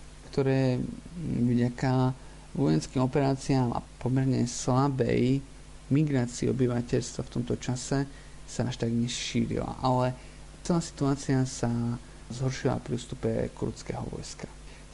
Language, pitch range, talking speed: Slovak, 120-140 Hz, 100 wpm